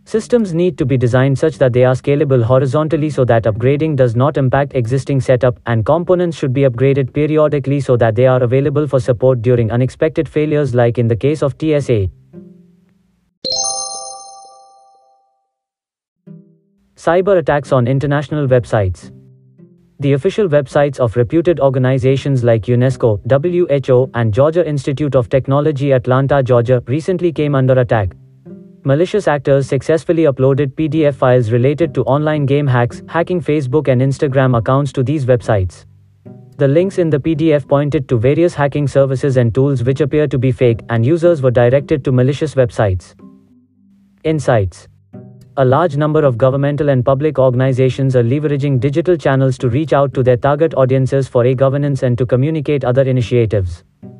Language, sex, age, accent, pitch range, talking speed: English, male, 30-49, Indian, 130-155 Hz, 150 wpm